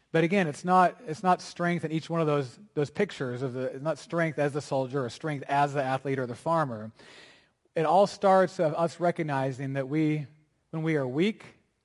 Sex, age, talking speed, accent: male, 30-49, 215 wpm, American